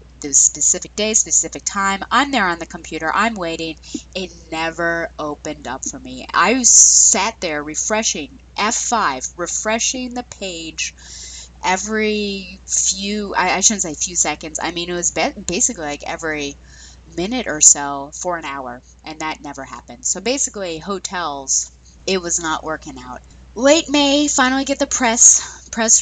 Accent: American